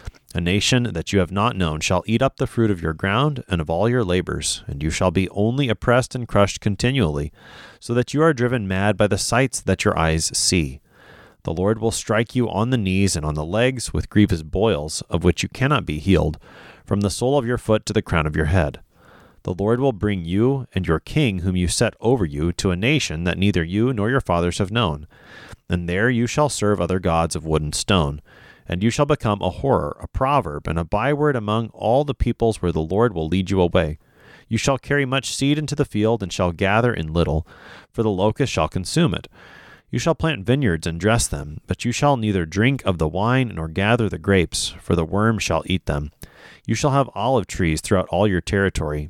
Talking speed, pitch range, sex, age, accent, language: 225 wpm, 85-120 Hz, male, 30-49, American, English